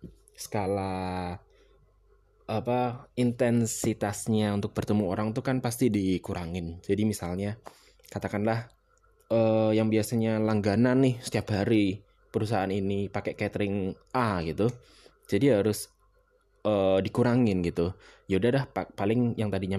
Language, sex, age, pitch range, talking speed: Indonesian, male, 20-39, 95-110 Hz, 110 wpm